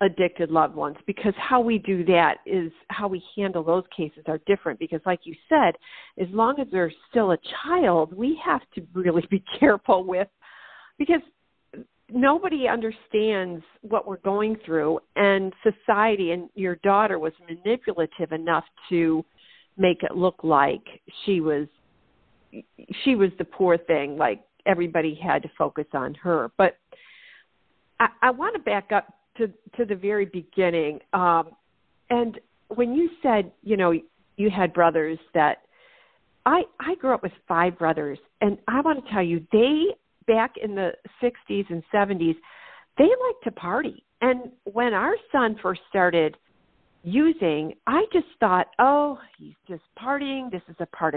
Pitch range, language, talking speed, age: 170-245 Hz, English, 155 wpm, 50-69